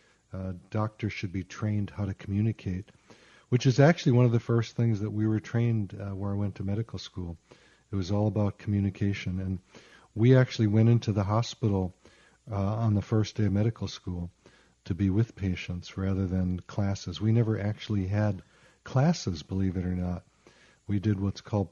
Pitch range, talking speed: 100-115 Hz, 185 wpm